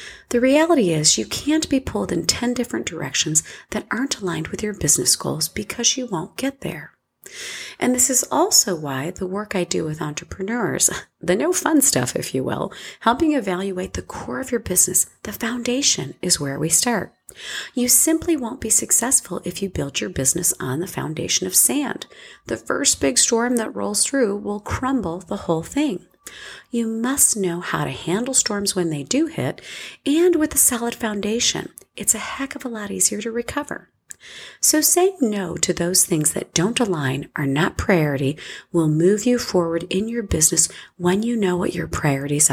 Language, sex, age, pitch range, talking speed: English, female, 40-59, 170-245 Hz, 185 wpm